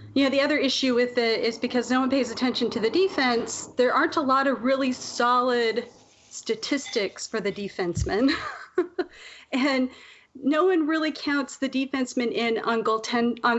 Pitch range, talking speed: 200-255 Hz, 165 wpm